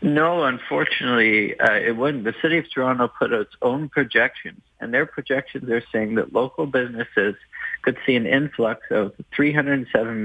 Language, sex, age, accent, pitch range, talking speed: English, male, 50-69, American, 115-150 Hz, 165 wpm